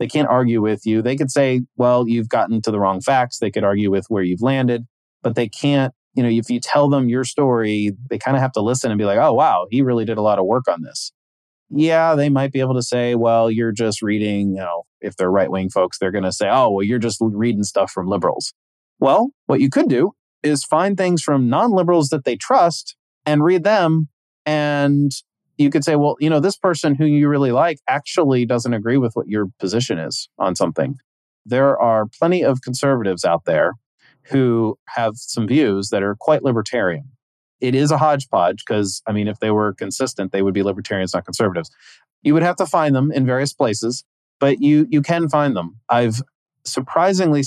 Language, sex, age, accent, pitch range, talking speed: English, male, 30-49, American, 105-140 Hz, 215 wpm